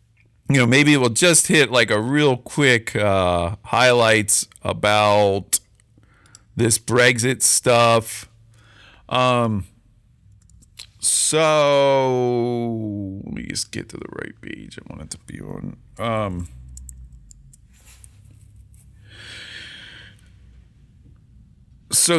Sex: male